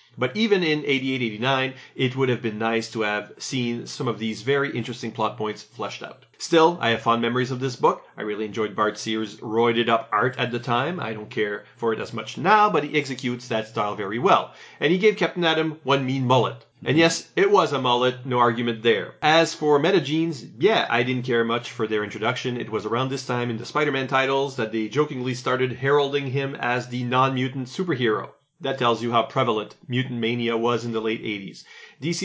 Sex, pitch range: male, 115-140 Hz